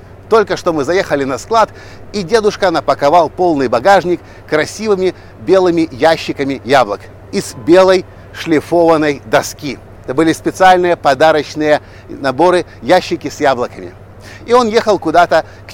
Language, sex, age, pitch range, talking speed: Russian, male, 50-69, 120-185 Hz, 120 wpm